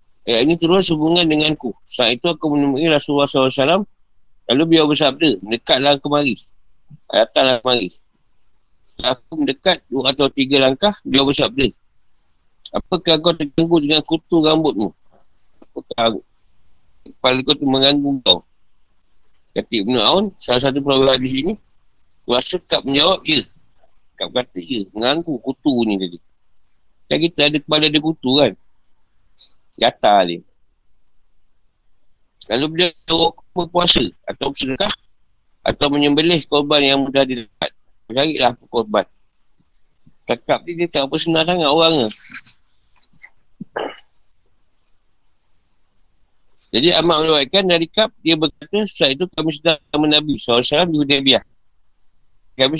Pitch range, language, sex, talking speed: 130-165 Hz, Malay, male, 115 wpm